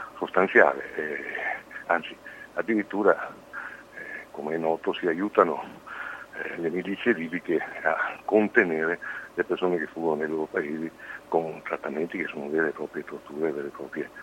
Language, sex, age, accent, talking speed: Italian, male, 60-79, native, 145 wpm